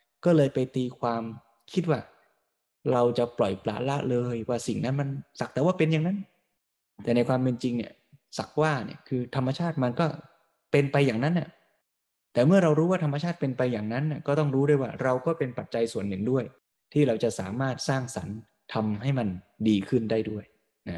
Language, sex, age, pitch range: Thai, male, 20-39, 115-150 Hz